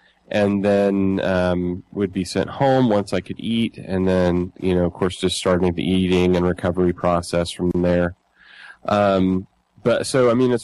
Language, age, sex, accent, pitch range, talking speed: English, 30-49, male, American, 85-100 Hz, 180 wpm